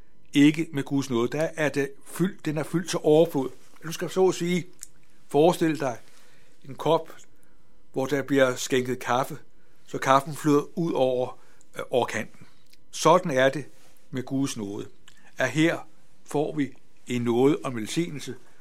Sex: male